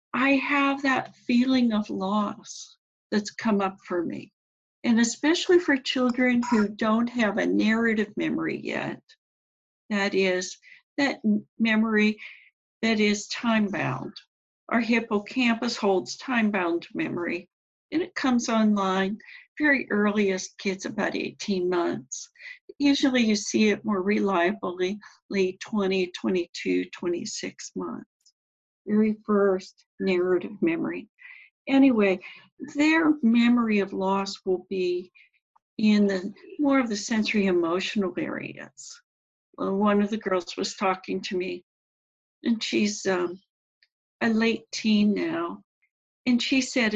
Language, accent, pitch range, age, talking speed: English, American, 195-255 Hz, 60-79, 120 wpm